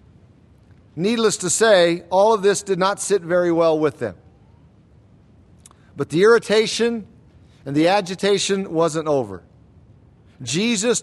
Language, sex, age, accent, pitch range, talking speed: English, male, 50-69, American, 140-215 Hz, 120 wpm